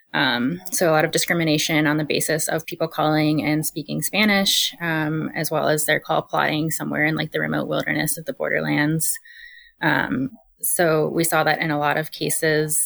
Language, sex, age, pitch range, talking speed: English, female, 20-39, 155-230 Hz, 190 wpm